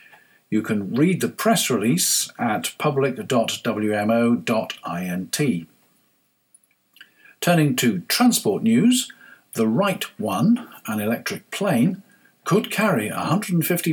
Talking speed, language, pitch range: 90 wpm, English, 120-175 Hz